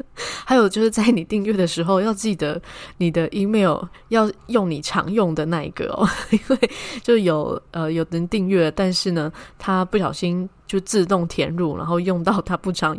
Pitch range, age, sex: 165-205 Hz, 20-39, female